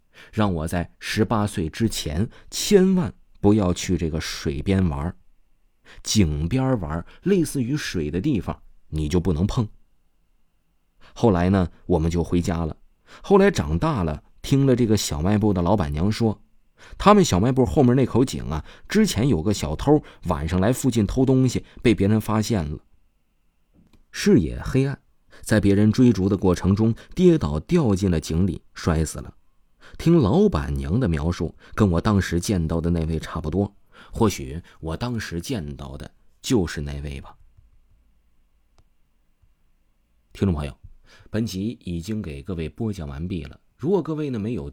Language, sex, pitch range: Chinese, male, 80-115 Hz